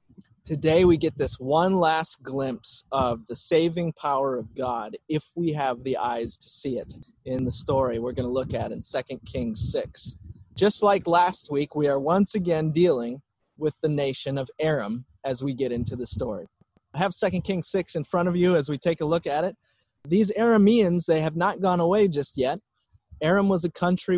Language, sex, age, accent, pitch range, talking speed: English, male, 30-49, American, 135-180 Hz, 205 wpm